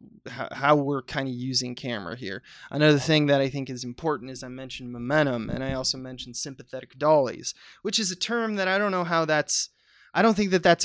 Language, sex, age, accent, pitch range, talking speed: English, male, 20-39, American, 130-165 Hz, 215 wpm